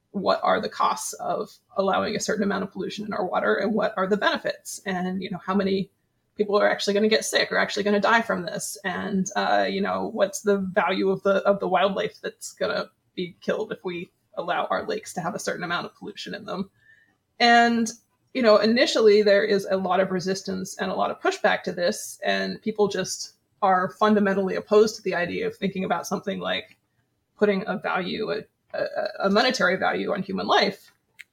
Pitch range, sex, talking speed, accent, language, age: 190-210 Hz, female, 210 wpm, American, English, 20-39